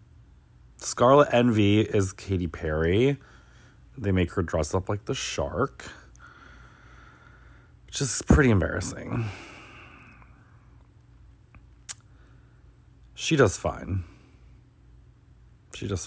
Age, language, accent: 30-49, English, American